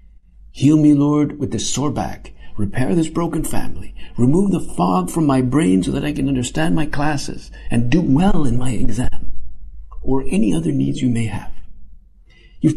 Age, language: 50-69, English